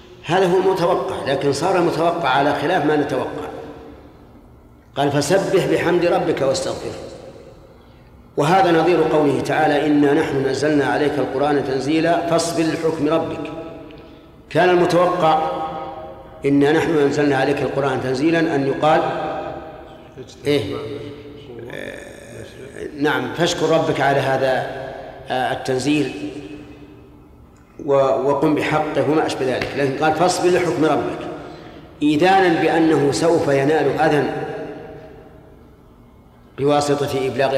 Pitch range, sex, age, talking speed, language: 140-160 Hz, male, 50-69, 100 wpm, Arabic